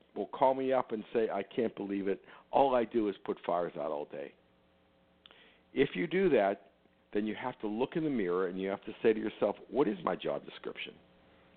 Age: 50-69